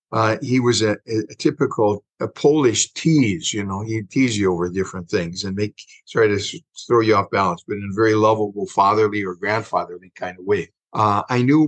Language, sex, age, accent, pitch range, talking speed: English, male, 50-69, American, 105-135 Hz, 200 wpm